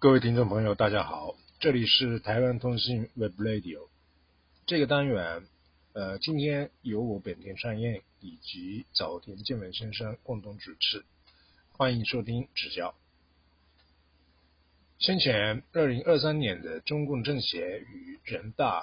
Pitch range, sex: 90-140 Hz, male